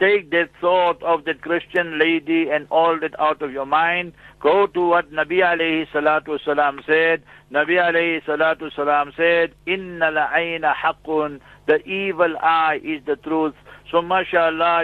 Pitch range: 155-170 Hz